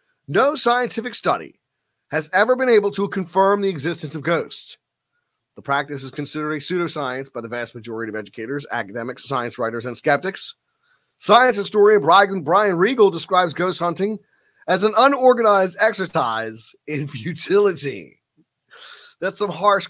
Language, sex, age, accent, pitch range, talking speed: English, male, 30-49, American, 135-200 Hz, 140 wpm